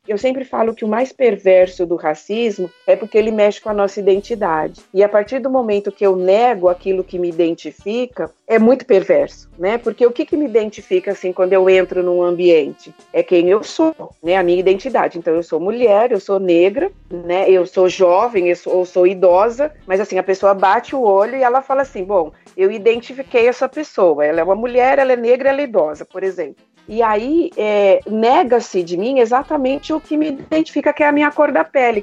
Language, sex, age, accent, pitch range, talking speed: Portuguese, female, 40-59, Brazilian, 185-250 Hz, 215 wpm